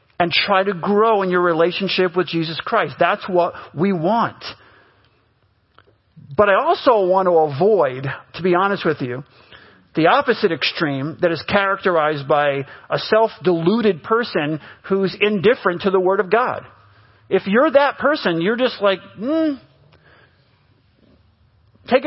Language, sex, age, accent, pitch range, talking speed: English, male, 50-69, American, 155-215 Hz, 140 wpm